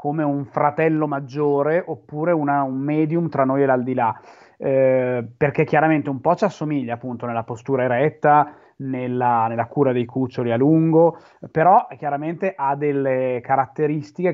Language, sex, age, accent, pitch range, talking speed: Italian, male, 20-39, native, 120-145 Hz, 140 wpm